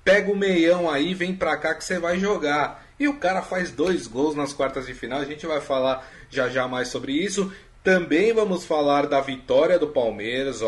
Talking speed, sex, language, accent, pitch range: 210 wpm, male, Portuguese, Brazilian, 130-170 Hz